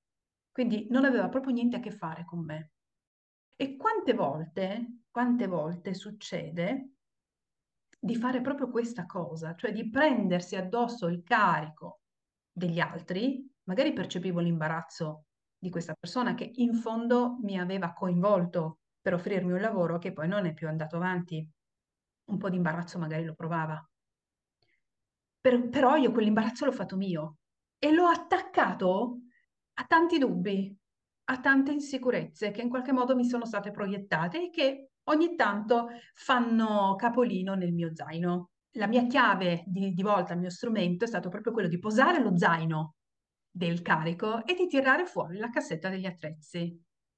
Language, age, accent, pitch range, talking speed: Italian, 40-59, native, 170-245 Hz, 150 wpm